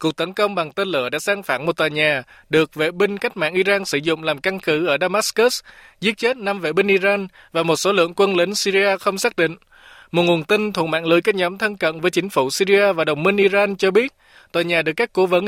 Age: 20-39